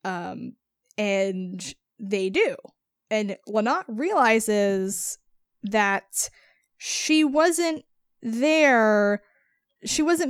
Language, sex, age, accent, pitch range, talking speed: English, female, 10-29, American, 195-230 Hz, 75 wpm